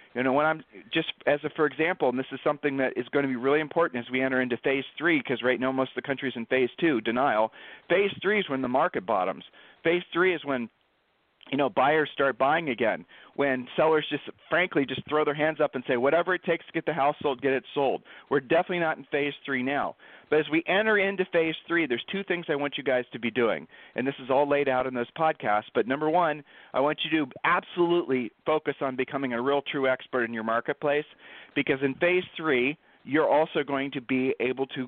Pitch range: 130-160 Hz